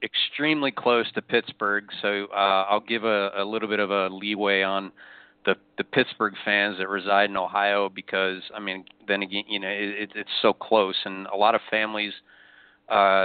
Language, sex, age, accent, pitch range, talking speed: English, male, 40-59, American, 95-105 Hz, 190 wpm